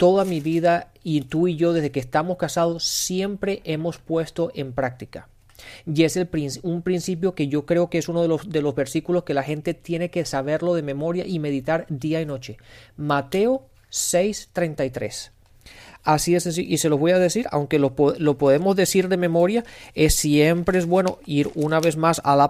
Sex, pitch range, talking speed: male, 150-190 Hz, 190 wpm